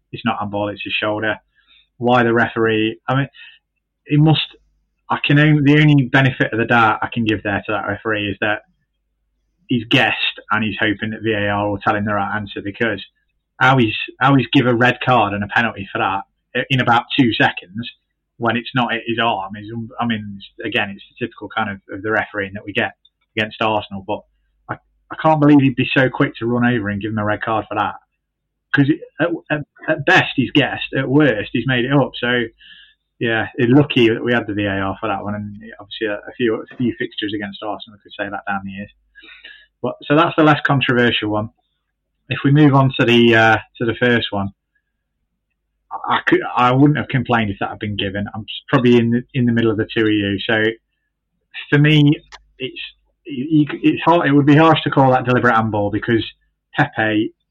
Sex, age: male, 20-39